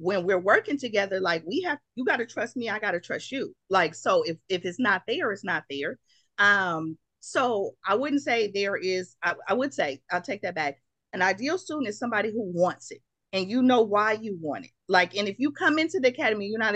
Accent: American